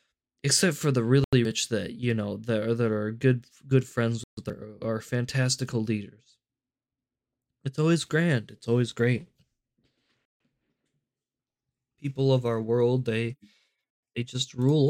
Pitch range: 120-150 Hz